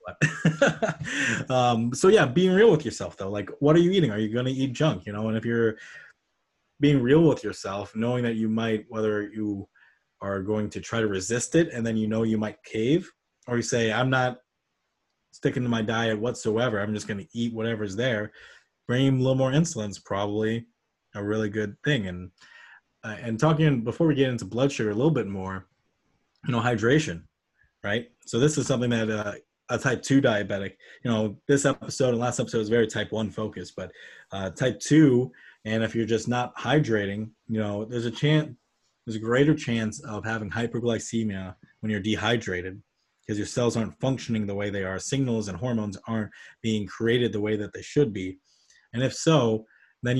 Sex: male